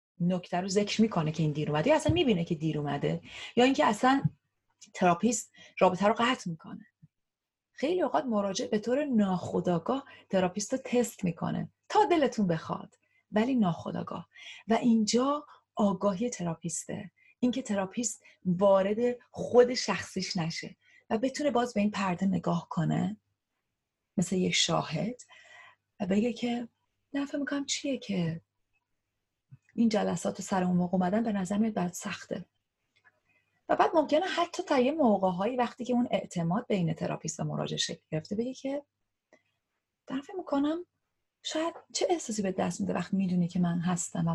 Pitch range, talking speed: 180-255 Hz, 145 wpm